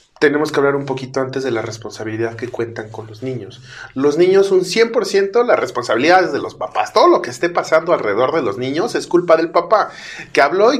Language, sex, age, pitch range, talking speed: Spanish, male, 30-49, 130-175 Hz, 220 wpm